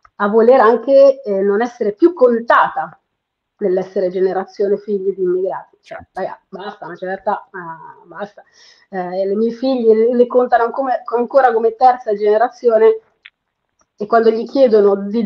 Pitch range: 205-275 Hz